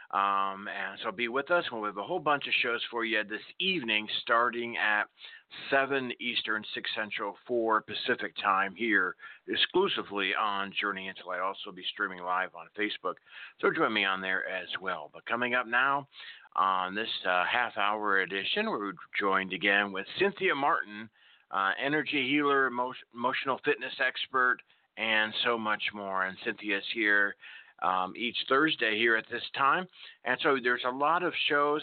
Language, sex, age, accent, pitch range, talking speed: English, male, 50-69, American, 100-125 Hz, 165 wpm